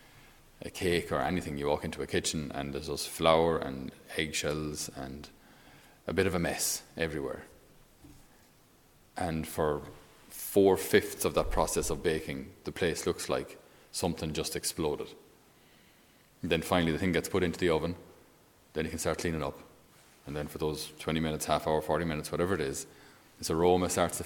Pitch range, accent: 75-90 Hz, Irish